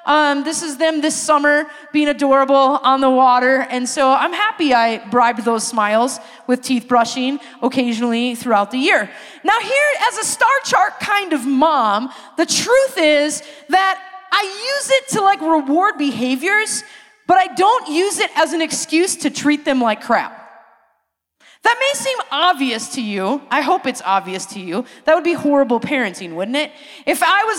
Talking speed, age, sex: 175 wpm, 30-49, female